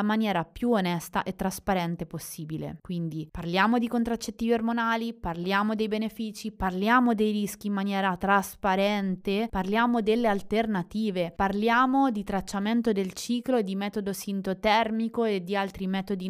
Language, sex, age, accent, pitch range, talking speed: Italian, female, 20-39, native, 185-220 Hz, 130 wpm